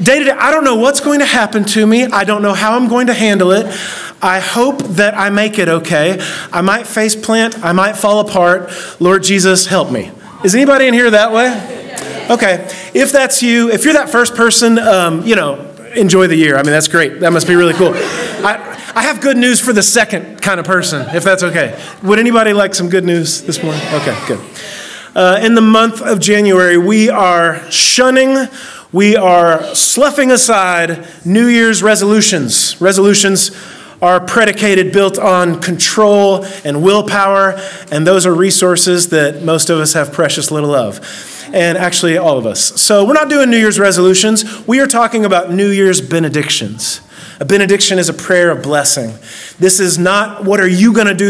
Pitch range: 175-220 Hz